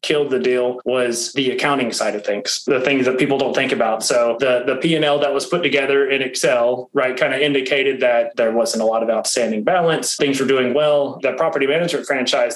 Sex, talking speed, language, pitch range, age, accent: male, 220 wpm, English, 125-150 Hz, 20-39, American